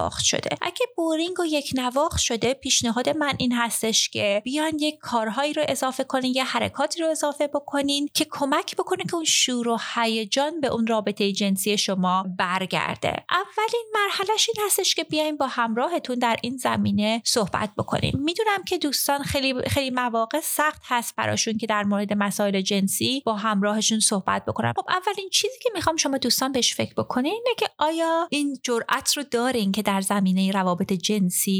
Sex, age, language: female, 30-49, Persian